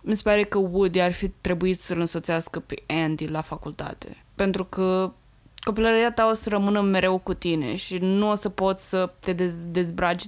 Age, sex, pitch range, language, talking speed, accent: 20-39, female, 175-200 Hz, Romanian, 185 wpm, native